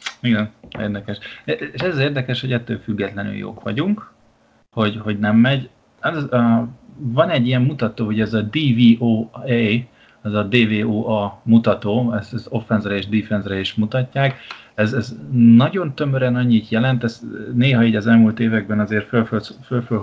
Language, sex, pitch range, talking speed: Hungarian, male, 110-120 Hz, 145 wpm